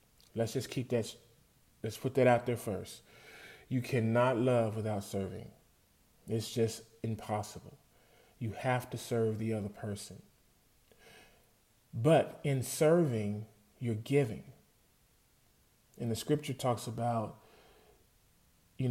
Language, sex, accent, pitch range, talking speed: English, male, American, 110-130 Hz, 115 wpm